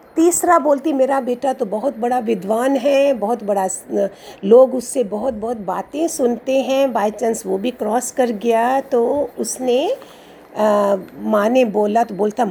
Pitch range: 230-295 Hz